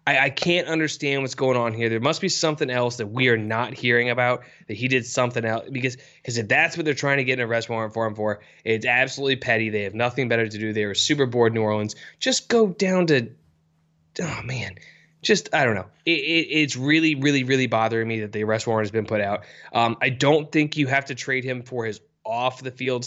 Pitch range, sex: 110-140 Hz, male